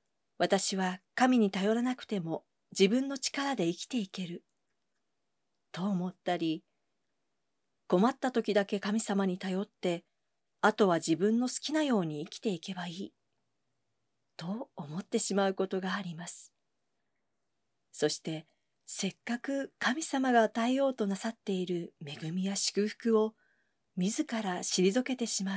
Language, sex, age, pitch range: Japanese, female, 40-59, 180-230 Hz